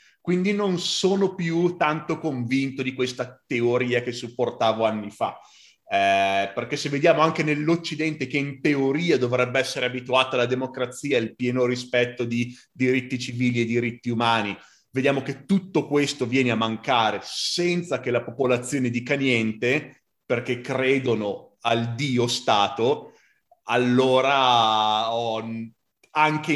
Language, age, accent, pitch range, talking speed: Italian, 30-49, native, 120-145 Hz, 130 wpm